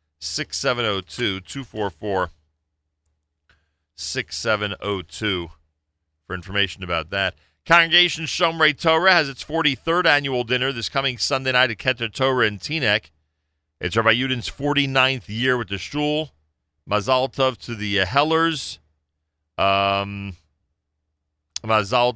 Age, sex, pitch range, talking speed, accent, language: 40-59, male, 80-125 Hz, 95 wpm, American, English